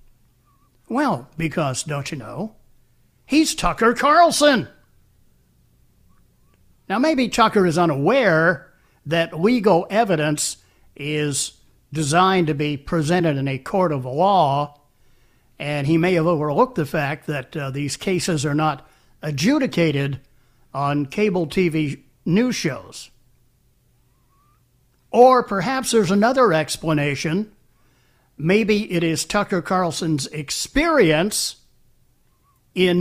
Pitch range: 140-200 Hz